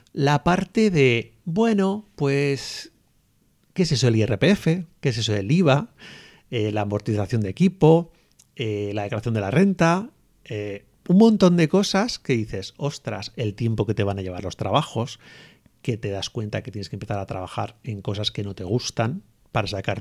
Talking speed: 185 wpm